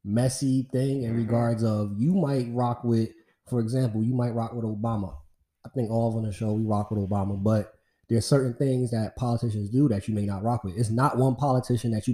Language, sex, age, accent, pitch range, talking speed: English, male, 20-39, American, 105-130 Hz, 225 wpm